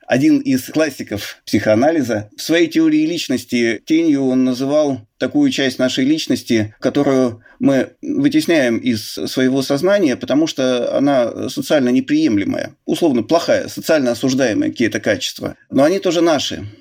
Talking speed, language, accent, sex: 130 wpm, Russian, native, male